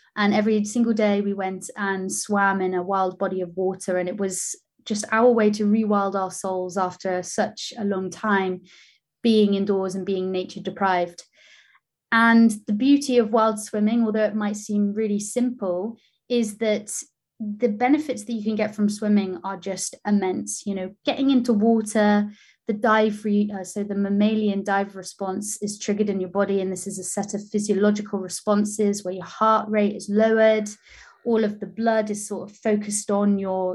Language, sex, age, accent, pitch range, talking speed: English, female, 20-39, British, 195-220 Hz, 185 wpm